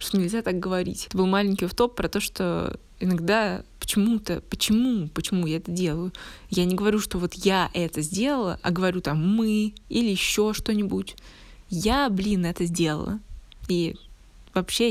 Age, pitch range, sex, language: 20-39, 175-200 Hz, female, Russian